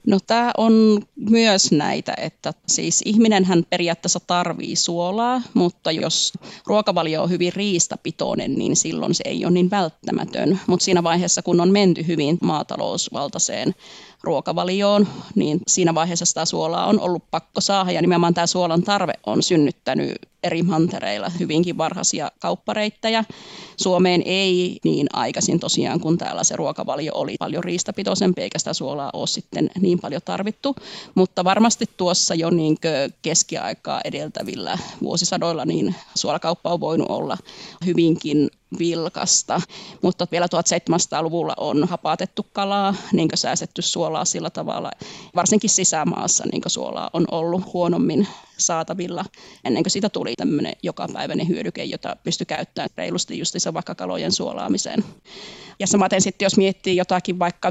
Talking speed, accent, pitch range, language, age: 135 wpm, native, 175-205 Hz, Finnish, 30-49